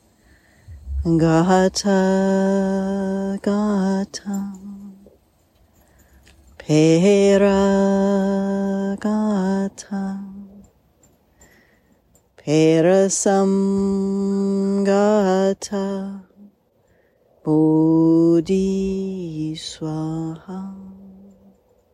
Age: 30-49